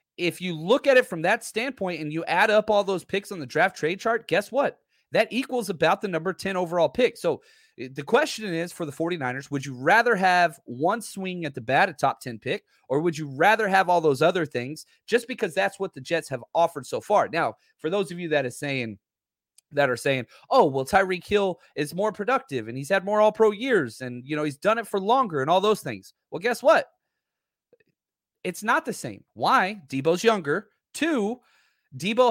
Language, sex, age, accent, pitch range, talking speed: English, male, 30-49, American, 145-205 Hz, 215 wpm